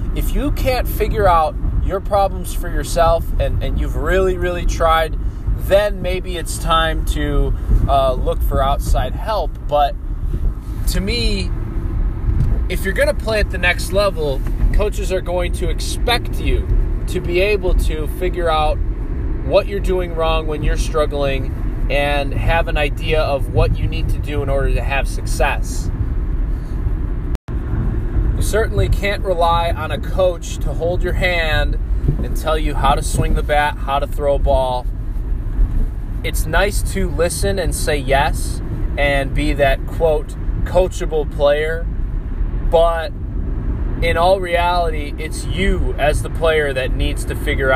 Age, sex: 20-39, male